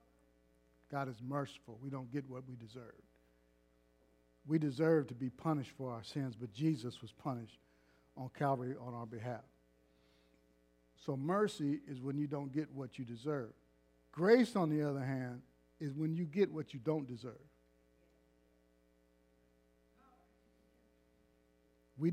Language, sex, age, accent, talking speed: English, male, 50-69, American, 135 wpm